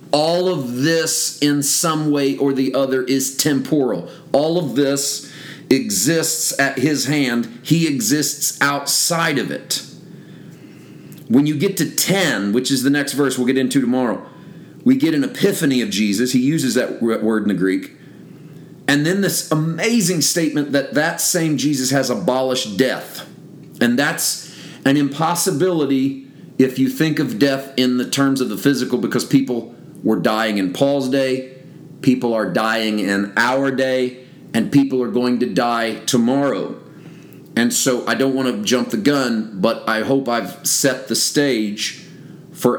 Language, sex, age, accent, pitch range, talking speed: English, male, 40-59, American, 125-150 Hz, 160 wpm